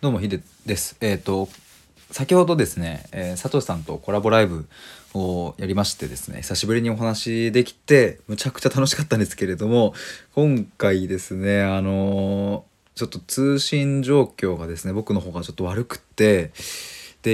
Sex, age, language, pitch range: male, 20-39, Japanese, 90-120 Hz